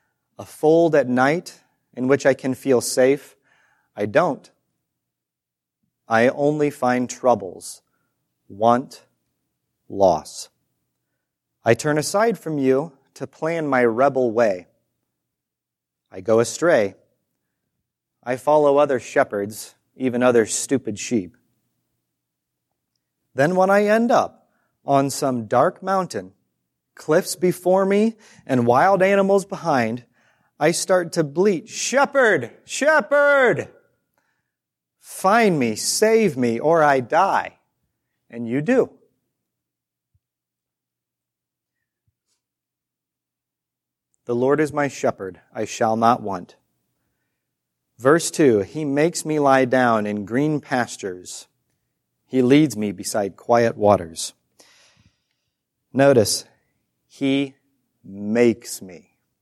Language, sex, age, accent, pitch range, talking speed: English, male, 30-49, American, 110-155 Hz, 100 wpm